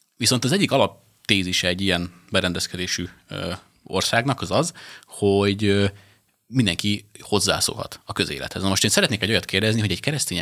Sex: male